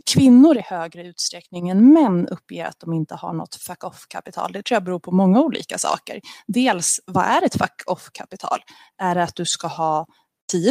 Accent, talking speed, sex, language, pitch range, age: native, 180 wpm, female, Swedish, 165-200 Hz, 30-49